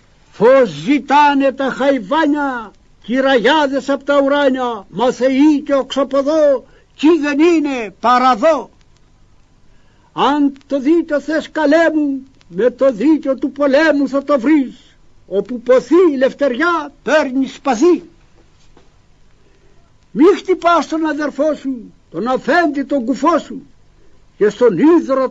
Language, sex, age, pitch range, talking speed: Greek, male, 60-79, 260-305 Hz, 115 wpm